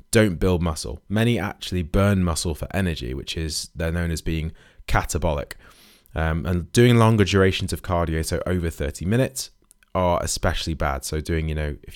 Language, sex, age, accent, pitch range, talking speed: English, male, 20-39, British, 80-100 Hz, 175 wpm